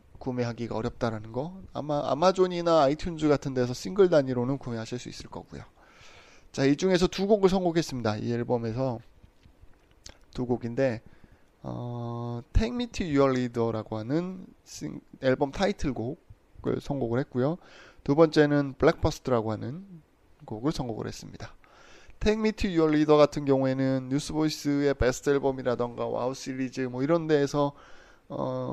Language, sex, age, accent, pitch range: Korean, male, 20-39, native, 120-160 Hz